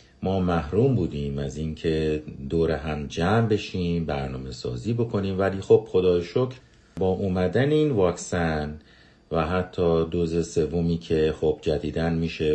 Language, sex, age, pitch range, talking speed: Persian, male, 50-69, 80-115 Hz, 135 wpm